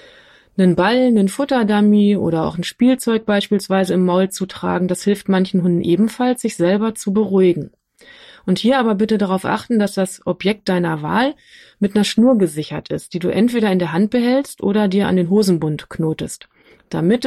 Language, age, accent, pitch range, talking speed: German, 30-49, German, 180-225 Hz, 180 wpm